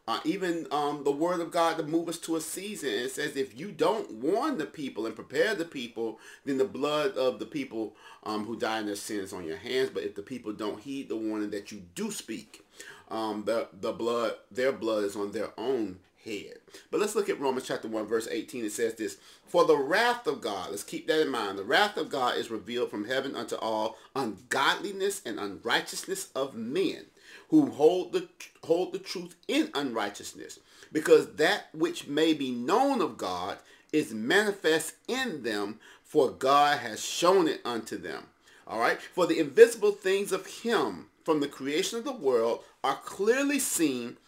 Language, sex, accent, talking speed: English, male, American, 200 wpm